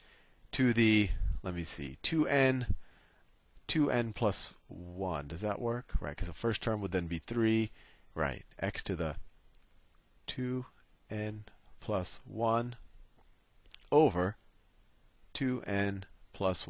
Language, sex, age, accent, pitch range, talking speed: English, male, 40-59, American, 85-115 Hz, 110 wpm